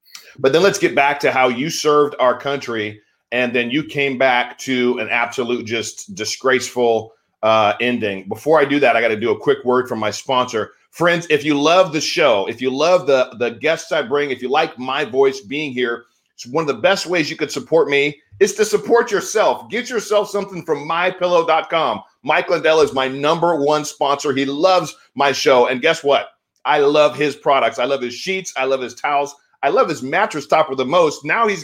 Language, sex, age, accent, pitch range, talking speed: English, male, 30-49, American, 130-180 Hz, 210 wpm